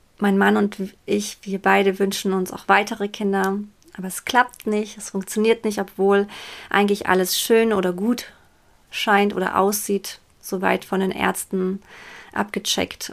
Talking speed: 145 wpm